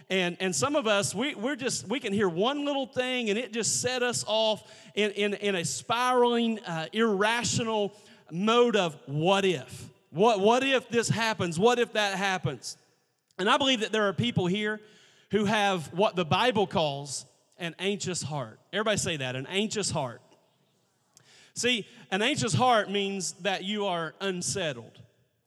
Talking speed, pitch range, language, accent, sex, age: 170 wpm, 155-205 Hz, English, American, male, 40-59